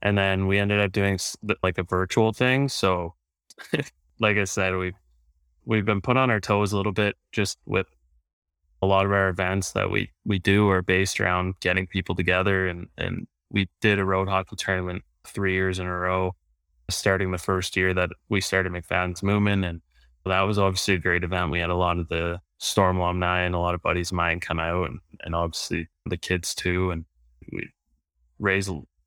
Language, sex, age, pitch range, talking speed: English, male, 20-39, 85-95 Hz, 200 wpm